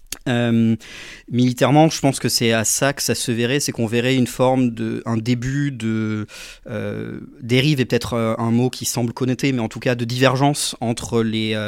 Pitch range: 110-130 Hz